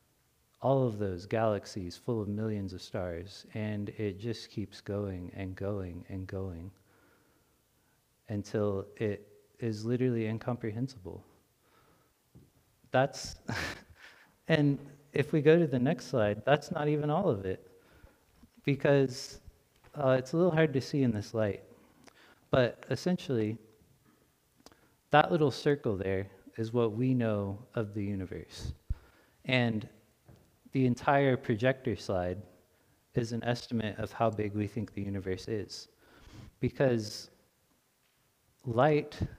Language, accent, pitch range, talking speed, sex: English, American, 100-130 Hz, 120 wpm, male